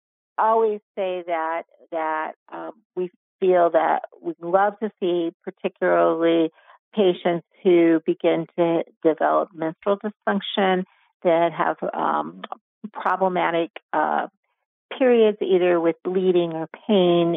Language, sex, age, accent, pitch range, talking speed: English, female, 50-69, American, 165-195 Hz, 105 wpm